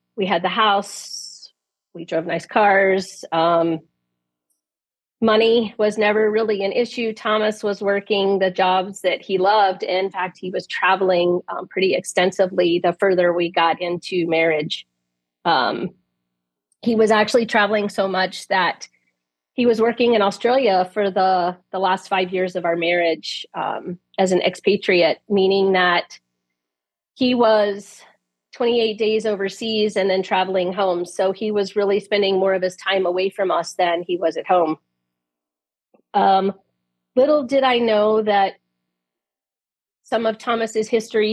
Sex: female